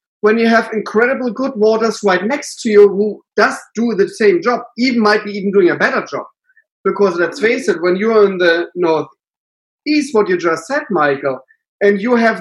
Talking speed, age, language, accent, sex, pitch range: 205 wpm, 30-49, English, German, male, 180-240 Hz